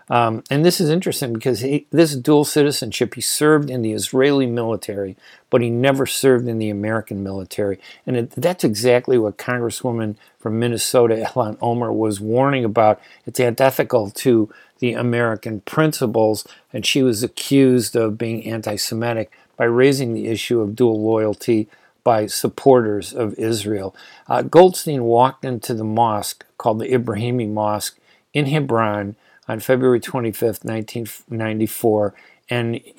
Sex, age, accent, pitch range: male, 50-69, American, 110-130 Hz